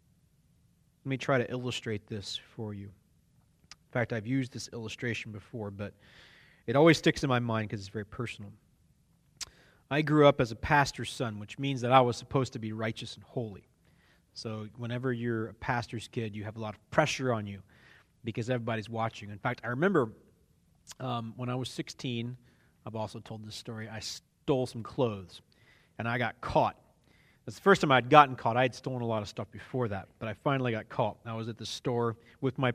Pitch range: 105-125 Hz